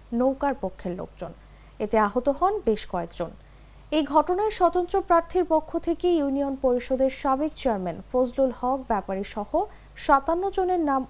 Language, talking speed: English, 135 wpm